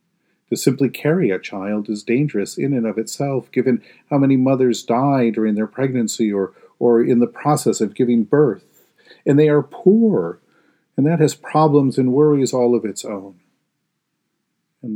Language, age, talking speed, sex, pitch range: English, 50-69, 170 wpm, male, 110-140 Hz